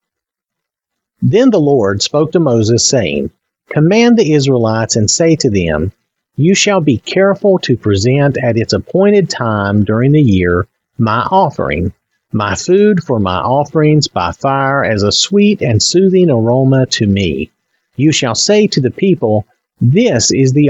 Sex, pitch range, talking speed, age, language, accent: male, 110-170 Hz, 155 wpm, 50-69, English, American